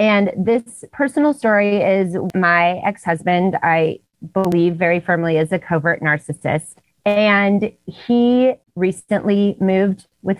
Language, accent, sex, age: English, American, female, 30-49